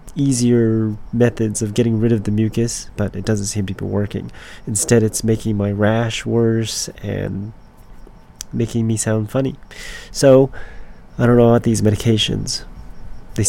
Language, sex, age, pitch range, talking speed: English, male, 30-49, 105-120 Hz, 150 wpm